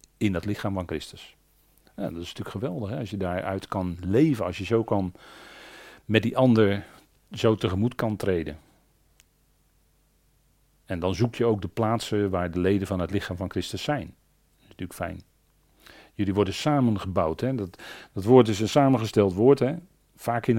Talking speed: 180 wpm